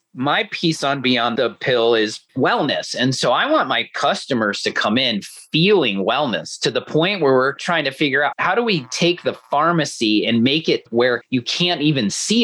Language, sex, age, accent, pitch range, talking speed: English, male, 30-49, American, 120-160 Hz, 205 wpm